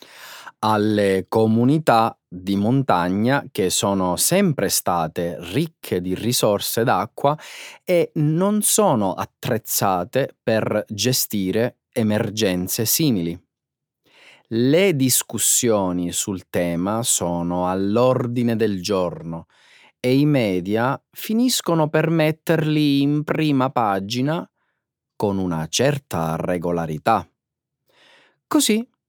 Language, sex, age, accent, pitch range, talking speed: Italian, male, 30-49, native, 100-155 Hz, 85 wpm